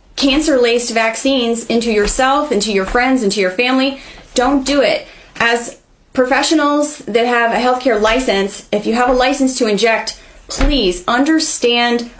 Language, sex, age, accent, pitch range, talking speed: English, female, 30-49, American, 215-265 Hz, 150 wpm